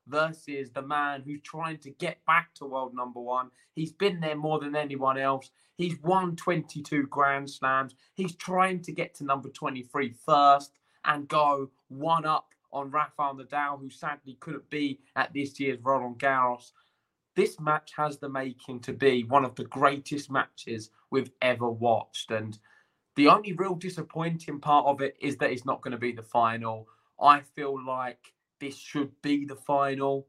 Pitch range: 120-150 Hz